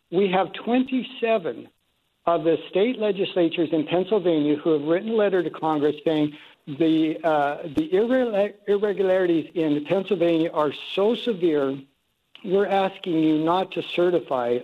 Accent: American